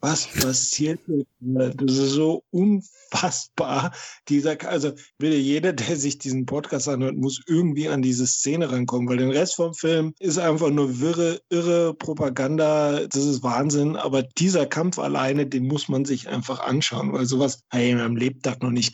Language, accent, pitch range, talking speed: German, German, 135-170 Hz, 175 wpm